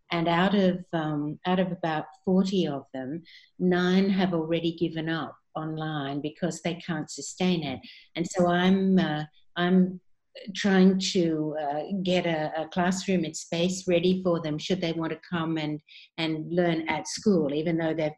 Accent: Australian